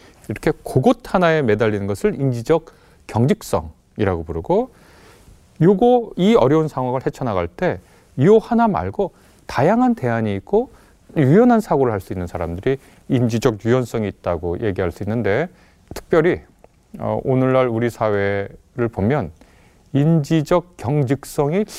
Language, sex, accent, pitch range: Korean, male, native, 100-160 Hz